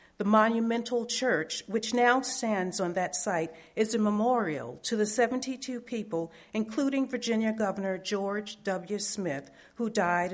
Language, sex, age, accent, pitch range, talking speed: English, female, 50-69, American, 185-230 Hz, 140 wpm